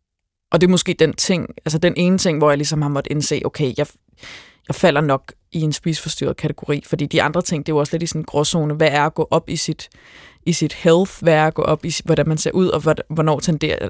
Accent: native